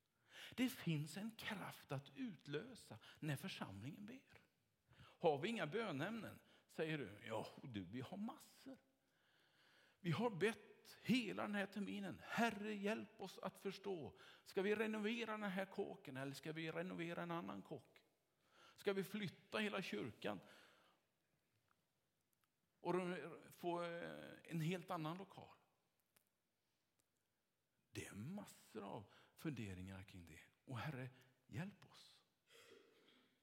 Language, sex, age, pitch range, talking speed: Swedish, male, 50-69, 150-210 Hz, 120 wpm